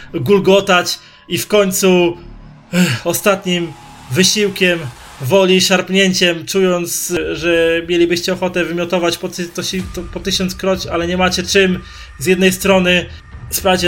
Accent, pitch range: native, 155-185 Hz